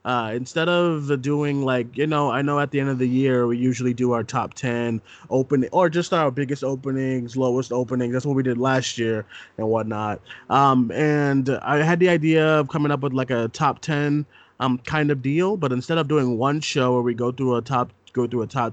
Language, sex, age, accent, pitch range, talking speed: English, male, 20-39, American, 120-140 Hz, 225 wpm